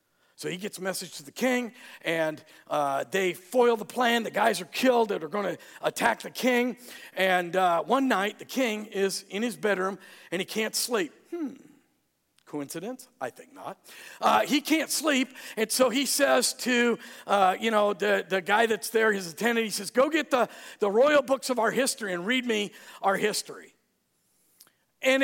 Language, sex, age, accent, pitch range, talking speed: English, male, 50-69, American, 195-265 Hz, 190 wpm